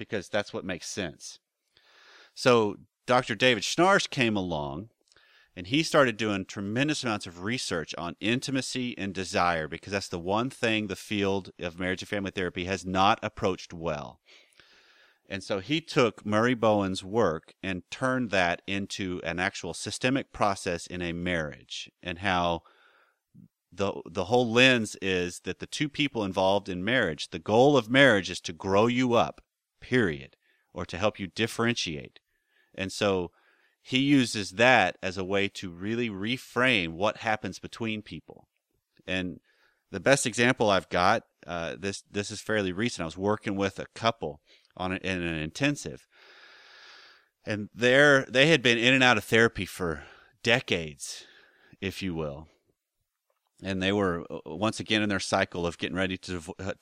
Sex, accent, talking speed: male, American, 160 wpm